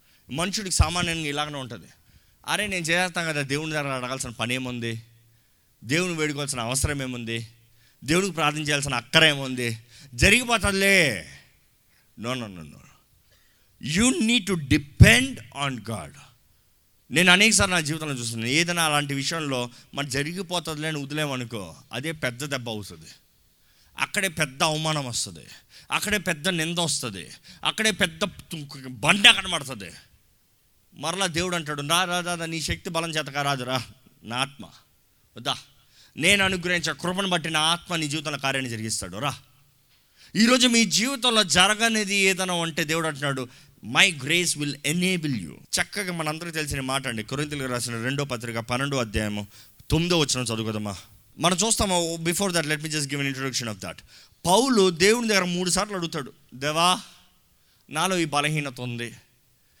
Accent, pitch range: native, 125-175 Hz